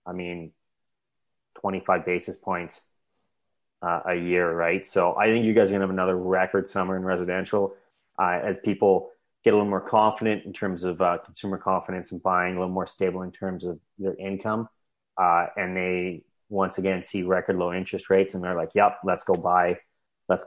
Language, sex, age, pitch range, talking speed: English, male, 30-49, 90-100 Hz, 195 wpm